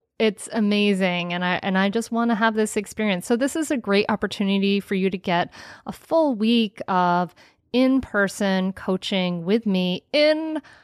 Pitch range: 185-230 Hz